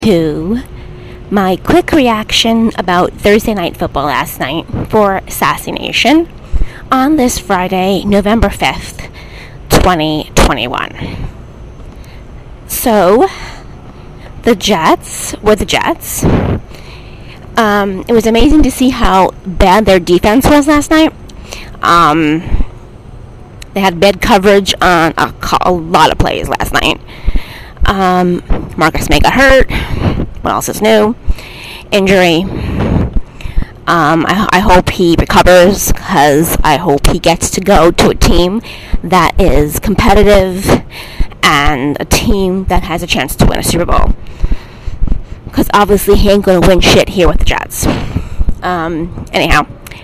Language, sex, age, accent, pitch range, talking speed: English, female, 30-49, American, 170-220 Hz, 125 wpm